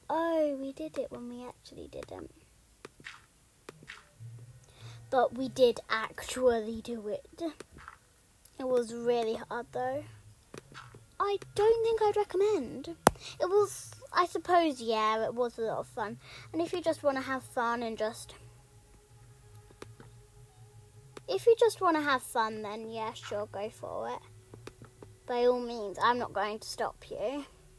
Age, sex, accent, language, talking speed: 10-29, female, British, English, 145 wpm